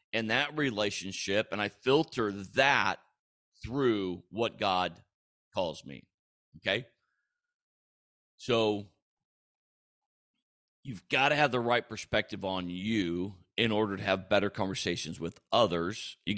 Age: 40-59